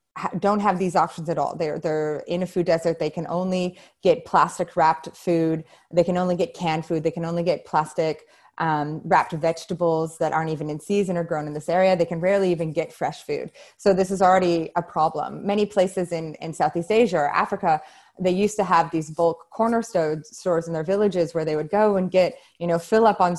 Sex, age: female, 20-39